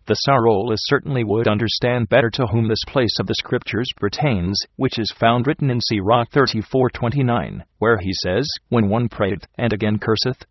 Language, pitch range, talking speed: English, 105-120 Hz, 170 wpm